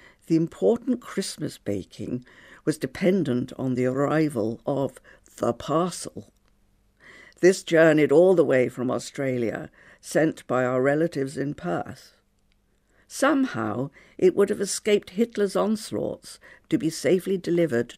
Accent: British